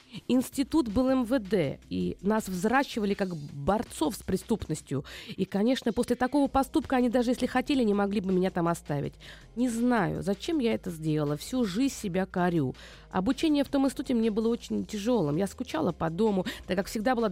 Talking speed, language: 175 wpm, Russian